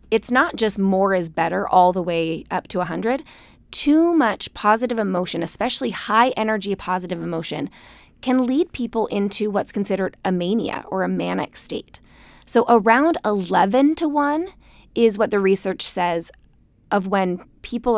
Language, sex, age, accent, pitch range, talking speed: English, female, 20-39, American, 185-240 Hz, 155 wpm